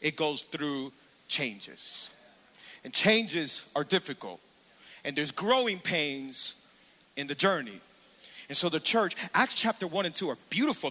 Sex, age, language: male, 40-59, English